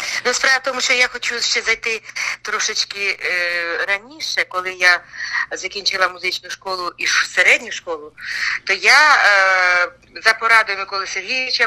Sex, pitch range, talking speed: female, 185-235 Hz, 140 wpm